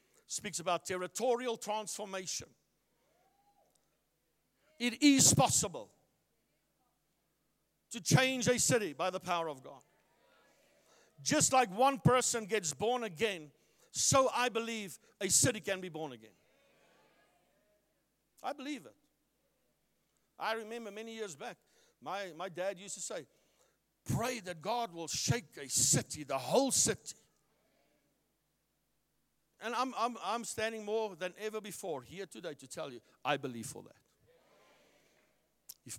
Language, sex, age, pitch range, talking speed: English, male, 60-79, 150-220 Hz, 125 wpm